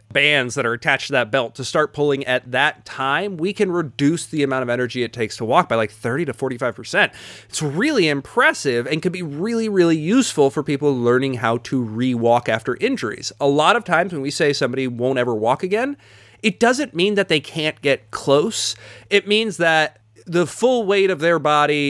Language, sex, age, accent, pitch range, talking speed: English, male, 30-49, American, 125-175 Hz, 205 wpm